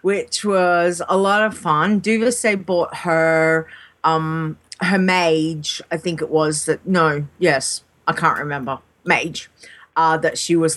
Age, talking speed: 30-49, 150 wpm